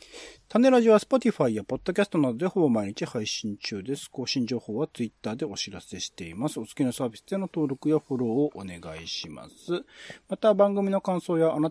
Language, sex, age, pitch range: Japanese, male, 40-59, 115-185 Hz